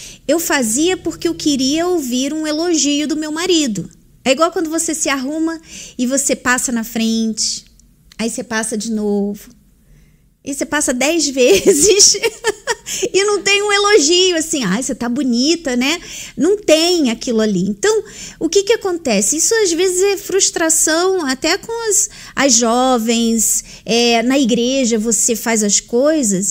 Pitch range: 235-350 Hz